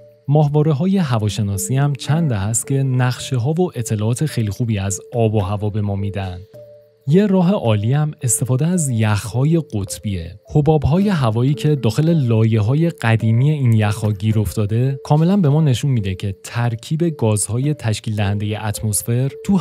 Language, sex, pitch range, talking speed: Persian, male, 105-150 Hz, 150 wpm